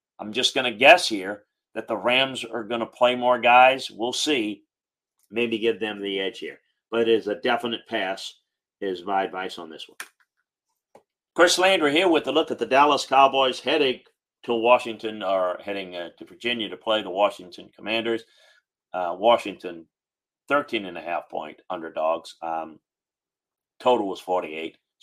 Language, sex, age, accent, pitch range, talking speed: English, male, 40-59, American, 95-125 Hz, 160 wpm